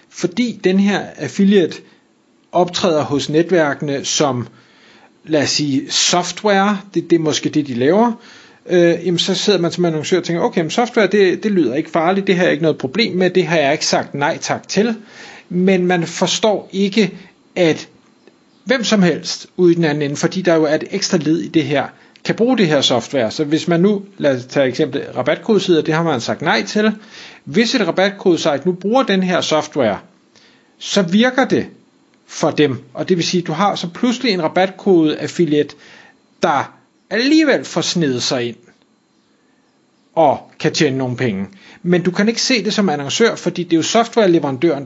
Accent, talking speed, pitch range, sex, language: native, 190 wpm, 150-200 Hz, male, Danish